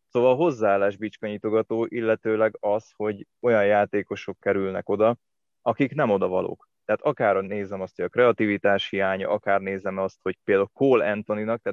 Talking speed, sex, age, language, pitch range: 150 wpm, male, 20-39, Hungarian, 100-120 Hz